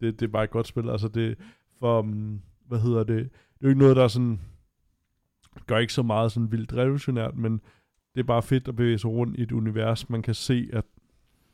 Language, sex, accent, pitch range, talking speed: Danish, male, native, 105-115 Hz, 235 wpm